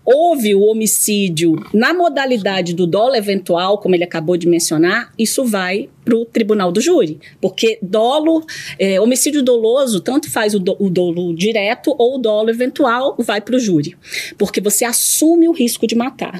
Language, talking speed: Portuguese, 170 wpm